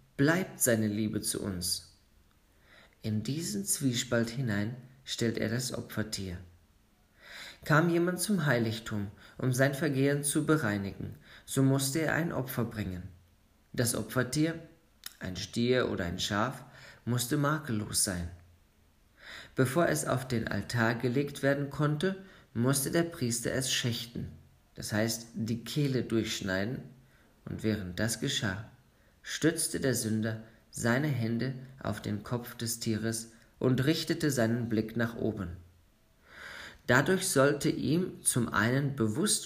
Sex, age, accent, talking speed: male, 40-59, German, 125 wpm